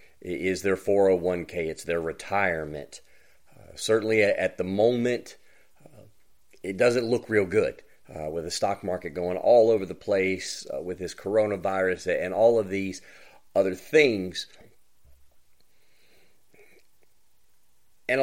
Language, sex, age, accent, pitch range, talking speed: English, male, 40-59, American, 95-125 Hz, 130 wpm